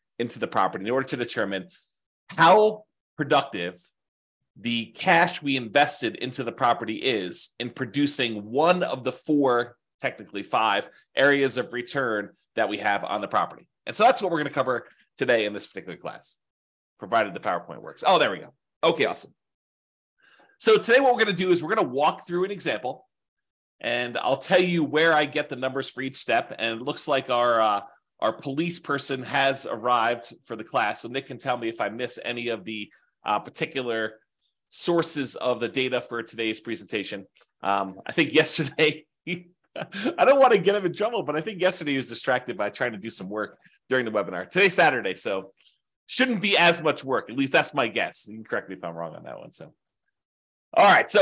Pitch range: 125-175 Hz